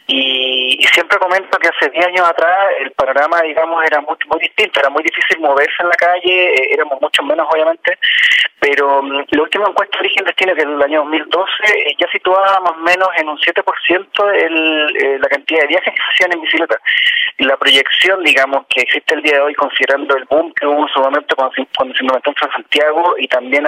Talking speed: 220 wpm